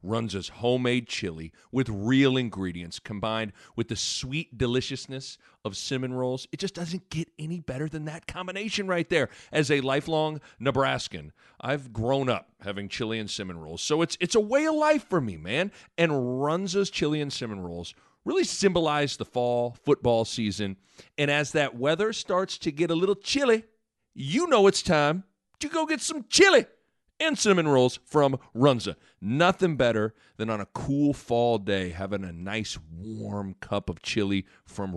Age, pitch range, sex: 40-59, 110-165 Hz, male